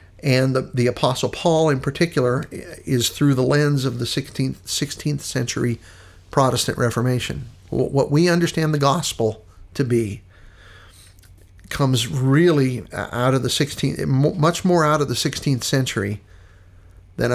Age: 50-69